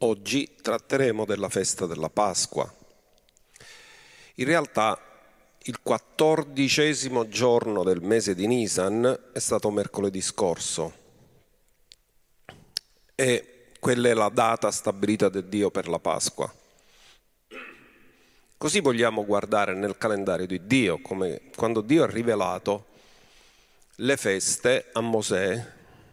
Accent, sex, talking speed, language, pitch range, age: native, male, 105 wpm, Italian, 105-140 Hz, 40-59